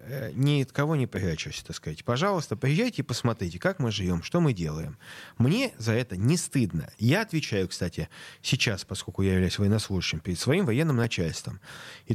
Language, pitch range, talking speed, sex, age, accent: Russian, 100-135 Hz, 175 wpm, male, 30-49, native